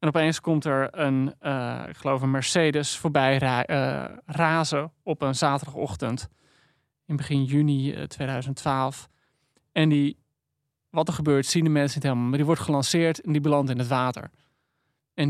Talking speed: 170 wpm